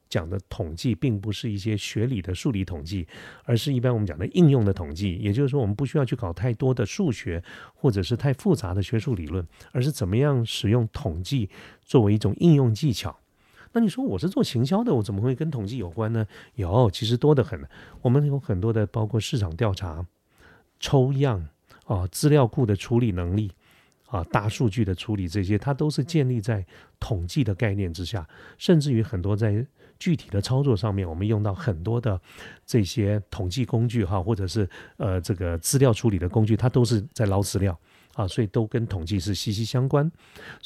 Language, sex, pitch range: Chinese, male, 100-135 Hz